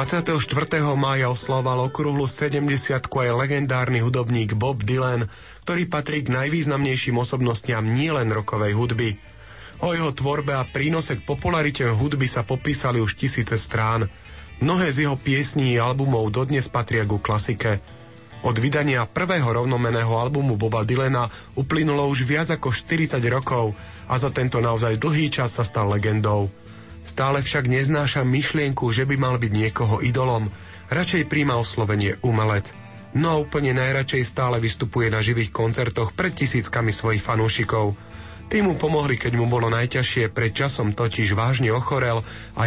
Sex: male